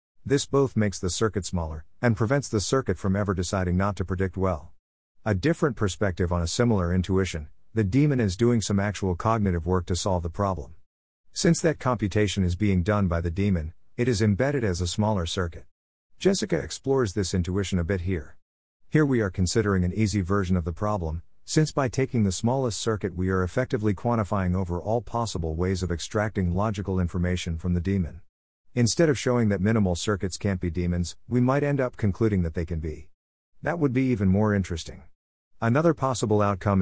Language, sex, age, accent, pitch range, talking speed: English, male, 50-69, American, 90-115 Hz, 190 wpm